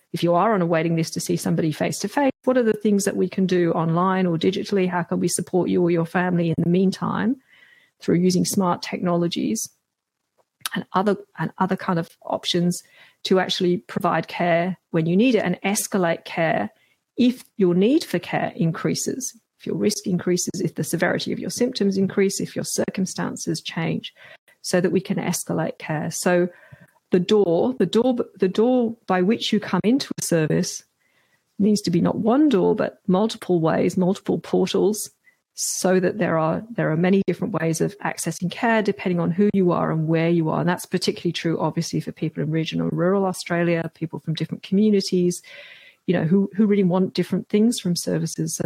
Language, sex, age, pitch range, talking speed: English, female, 40-59, 170-205 Hz, 190 wpm